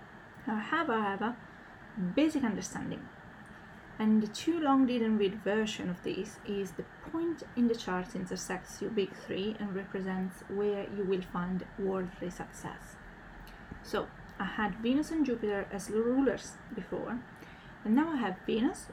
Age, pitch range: 30-49, 195-235 Hz